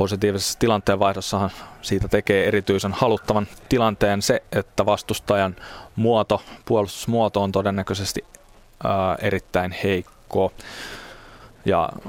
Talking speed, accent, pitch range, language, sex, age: 90 wpm, native, 95-105 Hz, Finnish, male, 20-39